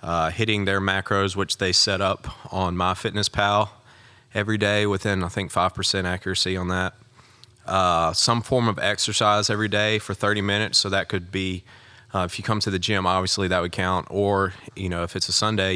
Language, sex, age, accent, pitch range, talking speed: English, male, 30-49, American, 95-110 Hz, 195 wpm